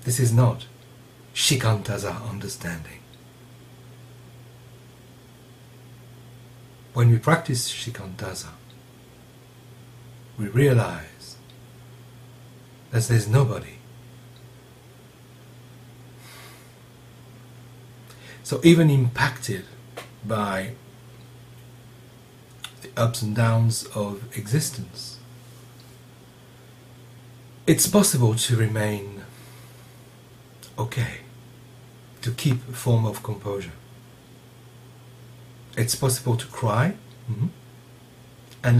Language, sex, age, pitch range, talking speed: English, male, 60-79, 120-125 Hz, 65 wpm